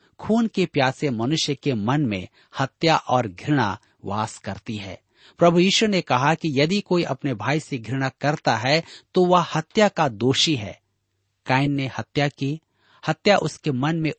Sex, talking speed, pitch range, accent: male, 170 wpm, 115-165 Hz, native